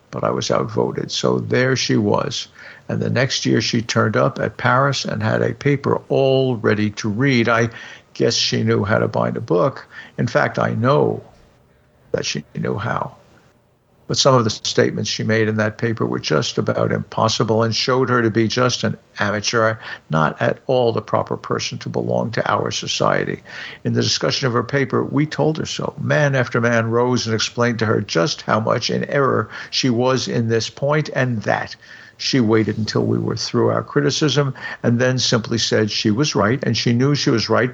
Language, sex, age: English, male, 60-79